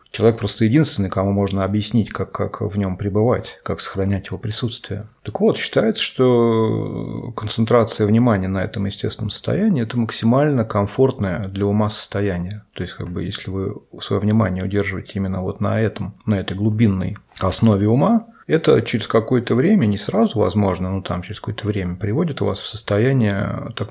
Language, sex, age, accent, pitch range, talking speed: Russian, male, 30-49, native, 100-120 Hz, 170 wpm